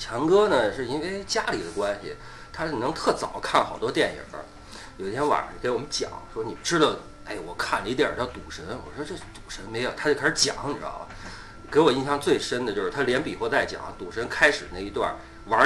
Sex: male